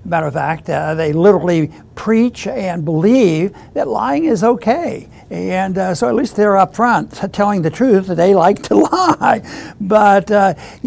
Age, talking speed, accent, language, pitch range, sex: 60-79, 170 wpm, American, English, 170-210 Hz, male